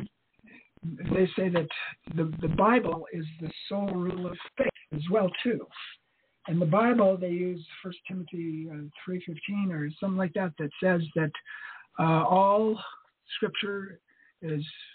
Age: 60-79